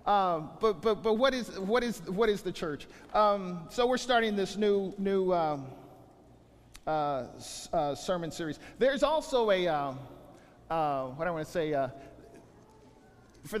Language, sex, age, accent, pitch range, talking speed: English, male, 40-59, American, 175-250 Hz, 165 wpm